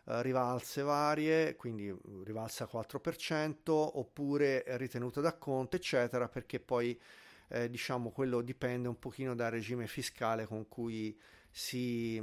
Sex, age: male, 40-59